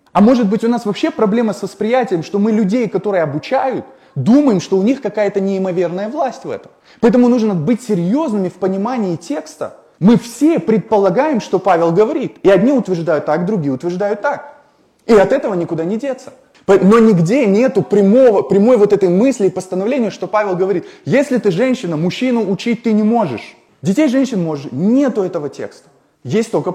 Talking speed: 175 wpm